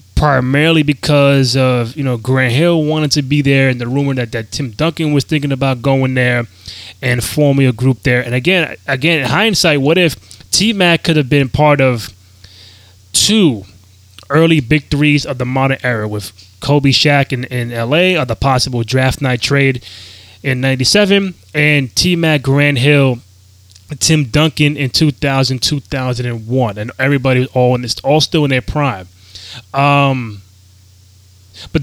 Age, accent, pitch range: 20-39, American, 115-150 Hz